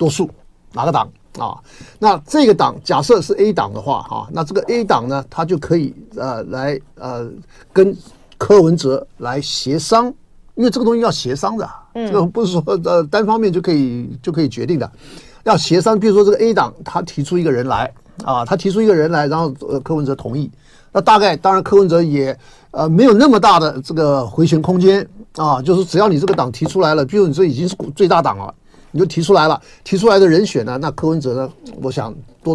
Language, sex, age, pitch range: Chinese, male, 50-69, 130-185 Hz